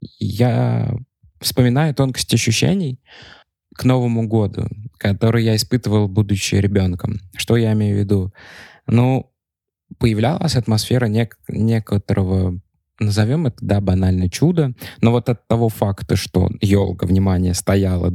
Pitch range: 95-115 Hz